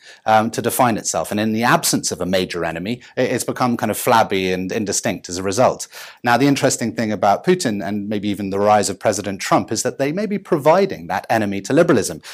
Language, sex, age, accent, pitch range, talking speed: English, male, 30-49, British, 105-140 Hz, 225 wpm